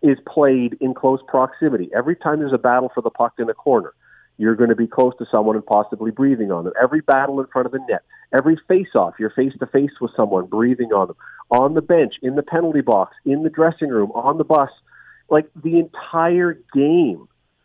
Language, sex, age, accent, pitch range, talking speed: English, male, 40-59, American, 115-150 Hz, 210 wpm